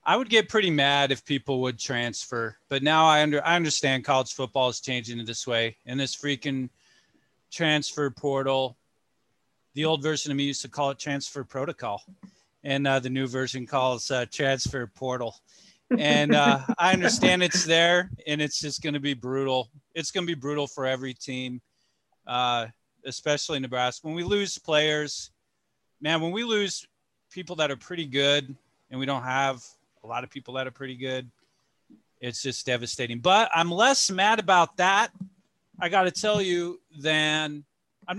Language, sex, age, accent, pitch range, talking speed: English, male, 30-49, American, 130-160 Hz, 175 wpm